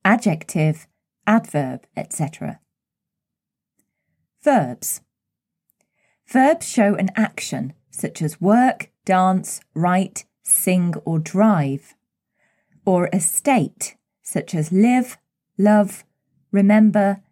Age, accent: 30-49, British